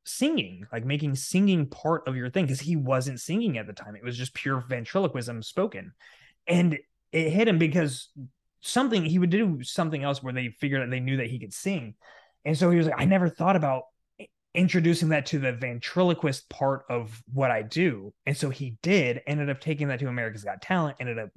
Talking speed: 210 wpm